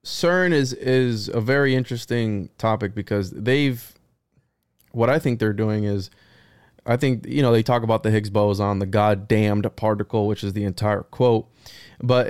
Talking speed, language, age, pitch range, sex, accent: 165 wpm, English, 20-39, 110-135 Hz, male, American